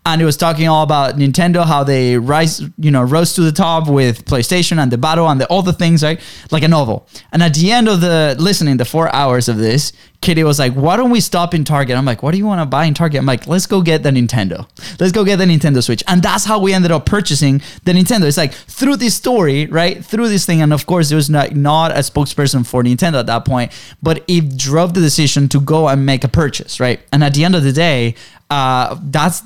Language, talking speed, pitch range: English, 260 wpm, 135-175 Hz